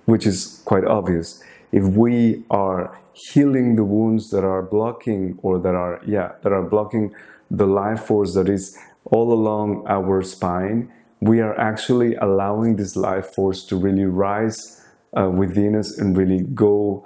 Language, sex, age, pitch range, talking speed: English, male, 30-49, 95-115 Hz, 160 wpm